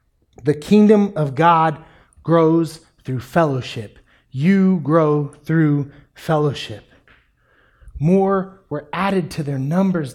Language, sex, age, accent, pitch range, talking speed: English, male, 30-49, American, 120-175 Hz, 100 wpm